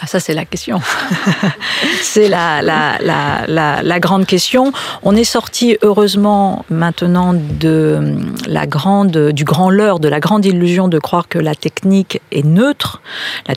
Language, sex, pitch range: French, female, 155-200 Hz